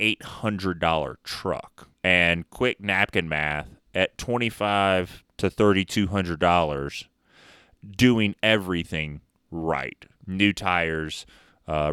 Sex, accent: male, American